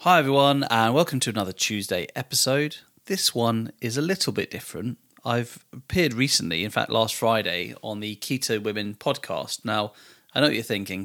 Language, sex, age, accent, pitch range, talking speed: English, male, 30-49, British, 105-130 Hz, 180 wpm